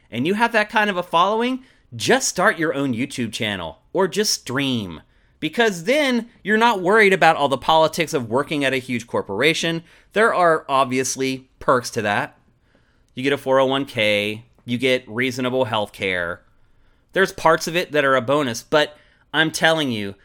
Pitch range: 120-160 Hz